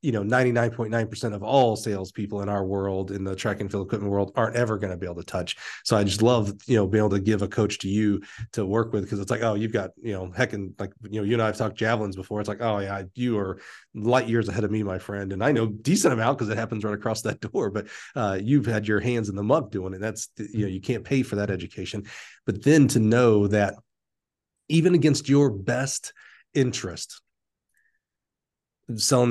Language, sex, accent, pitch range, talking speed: English, male, American, 100-120 Hz, 240 wpm